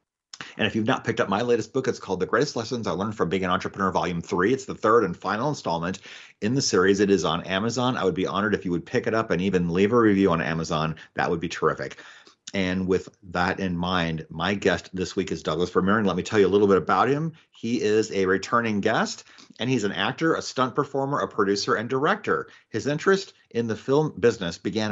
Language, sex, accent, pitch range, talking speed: English, male, American, 95-125 Hz, 245 wpm